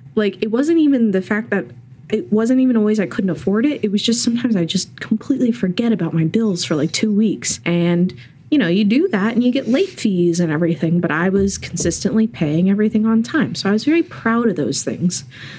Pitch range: 165-215 Hz